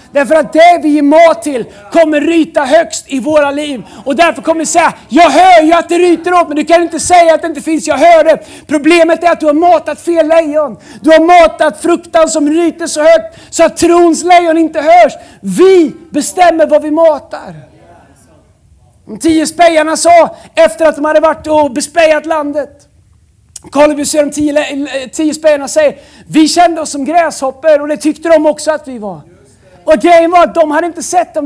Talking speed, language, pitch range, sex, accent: 205 wpm, Swedish, 285-325 Hz, male, native